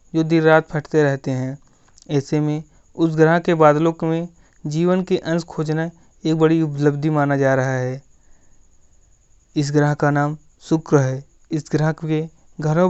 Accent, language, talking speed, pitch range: native, Hindi, 165 wpm, 145-160 Hz